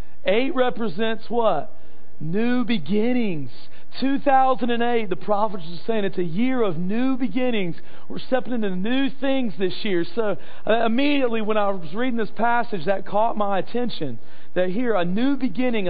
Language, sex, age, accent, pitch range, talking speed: English, male, 40-59, American, 165-225 Hz, 155 wpm